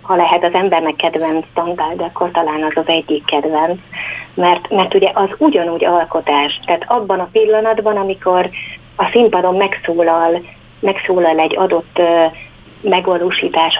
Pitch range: 165-190 Hz